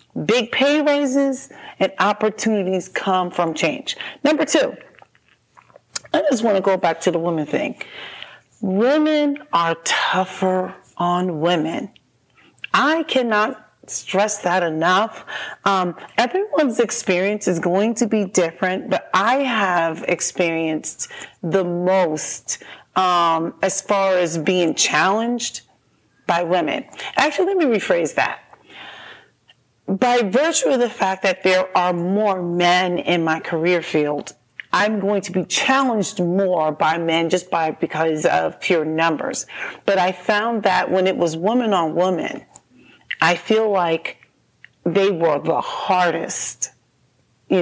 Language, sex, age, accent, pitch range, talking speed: English, female, 40-59, American, 170-220 Hz, 130 wpm